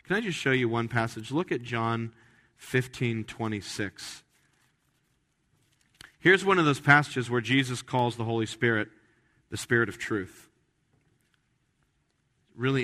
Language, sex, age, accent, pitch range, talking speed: English, male, 40-59, American, 115-155 Hz, 125 wpm